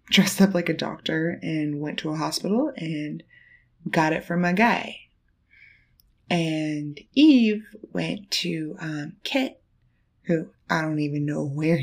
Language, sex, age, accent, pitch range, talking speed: English, female, 20-39, American, 145-175 Hz, 140 wpm